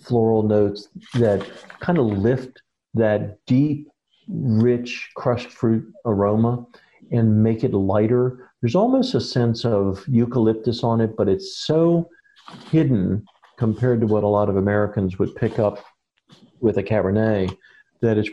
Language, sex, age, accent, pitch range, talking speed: English, male, 50-69, American, 105-125 Hz, 140 wpm